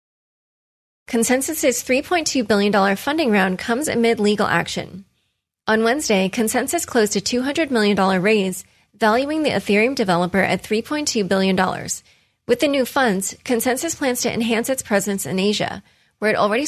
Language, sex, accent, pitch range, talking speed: English, female, American, 190-245 Hz, 140 wpm